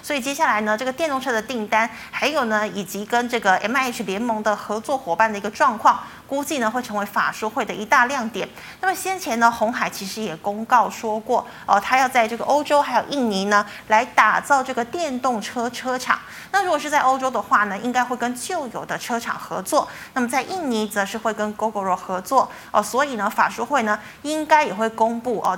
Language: Chinese